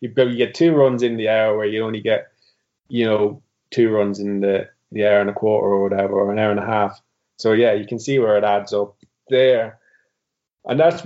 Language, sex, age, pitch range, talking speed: English, male, 20-39, 110-130 Hz, 230 wpm